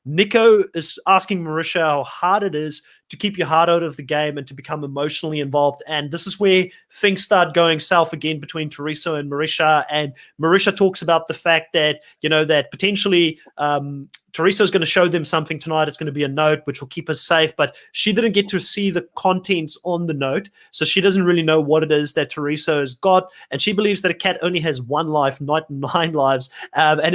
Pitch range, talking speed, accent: 150-180 Hz, 230 wpm, Australian